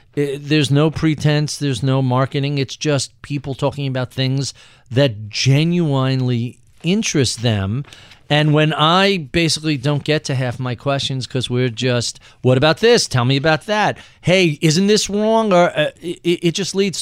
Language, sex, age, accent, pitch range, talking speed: English, male, 40-59, American, 125-170 Hz, 165 wpm